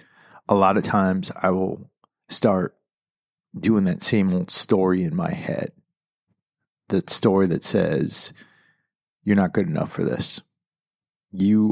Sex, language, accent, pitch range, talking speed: male, English, American, 95-110 Hz, 135 wpm